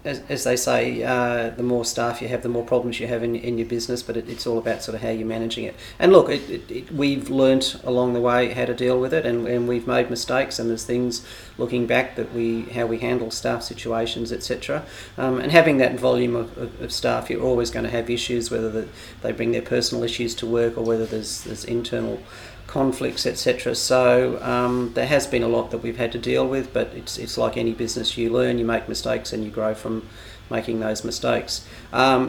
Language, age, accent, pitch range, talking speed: English, 40-59, Australian, 115-120 Hz, 235 wpm